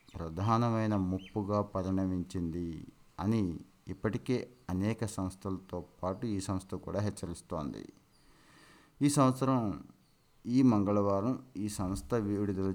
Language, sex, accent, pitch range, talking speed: Telugu, male, native, 90-115 Hz, 90 wpm